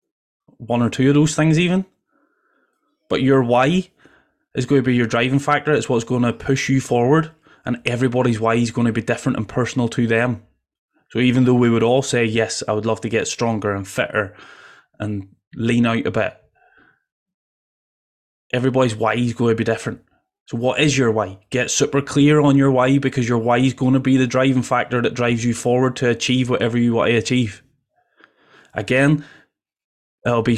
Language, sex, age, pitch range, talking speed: English, male, 20-39, 115-145 Hz, 195 wpm